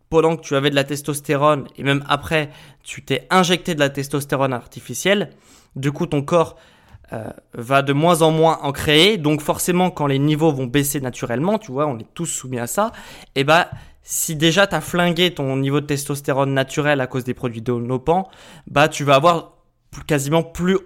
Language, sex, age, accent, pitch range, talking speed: French, male, 20-39, French, 130-165 Hz, 200 wpm